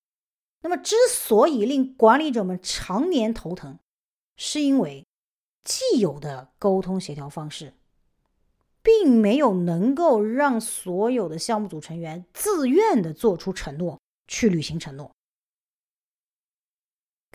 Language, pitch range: Chinese, 170-275 Hz